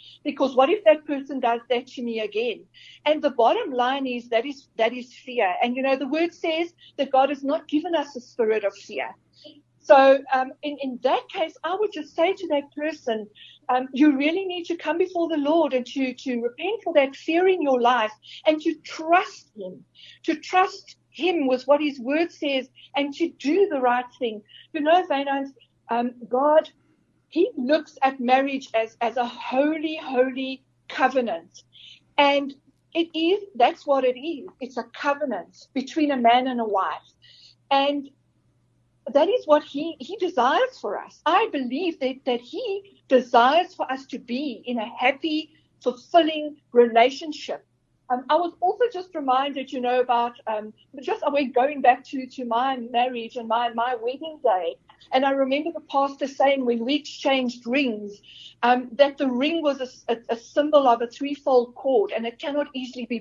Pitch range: 250-315 Hz